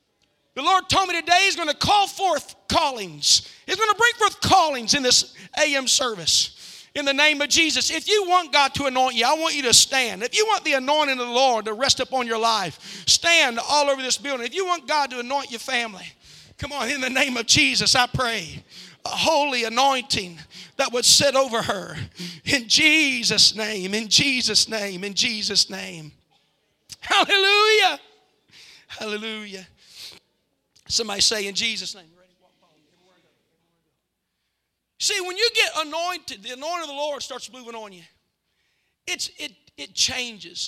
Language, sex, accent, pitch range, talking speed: English, male, American, 185-290 Hz, 170 wpm